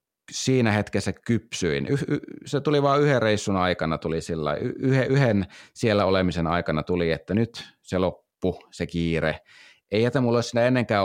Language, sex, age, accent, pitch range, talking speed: Finnish, male, 30-49, native, 95-120 Hz, 150 wpm